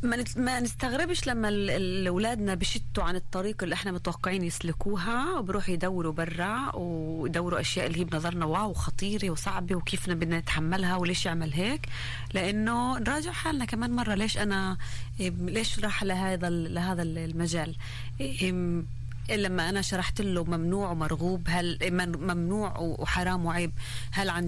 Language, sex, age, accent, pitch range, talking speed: Hebrew, female, 30-49, Lebanese, 155-200 Hz, 125 wpm